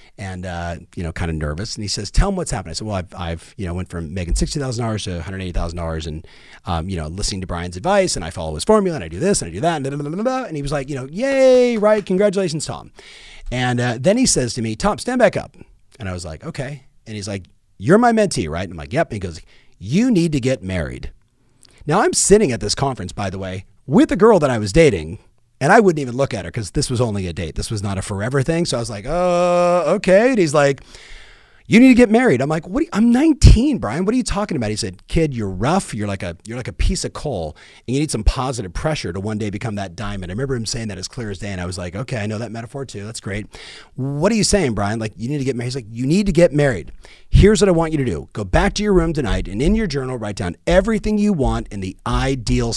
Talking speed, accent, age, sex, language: 275 wpm, American, 40-59, male, English